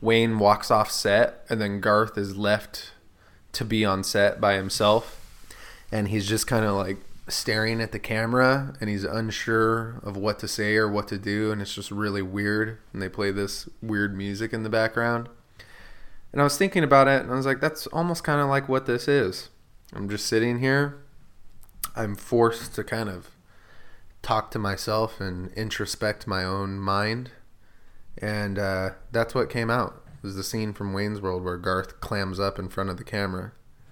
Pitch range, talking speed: 95-120 Hz, 190 wpm